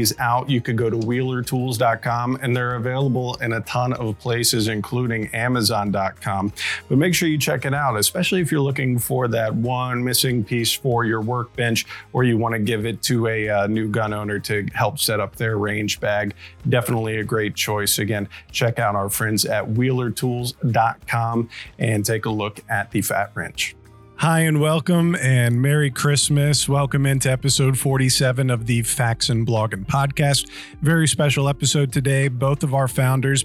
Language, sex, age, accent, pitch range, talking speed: English, male, 40-59, American, 115-140 Hz, 175 wpm